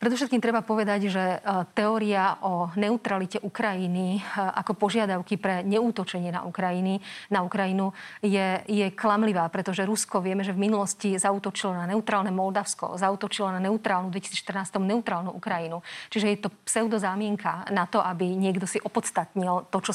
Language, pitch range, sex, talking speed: Slovak, 185-210 Hz, female, 145 wpm